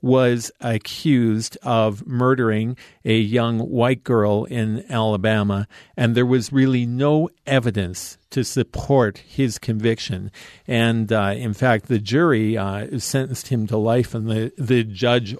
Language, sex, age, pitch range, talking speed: English, male, 50-69, 105-125 Hz, 135 wpm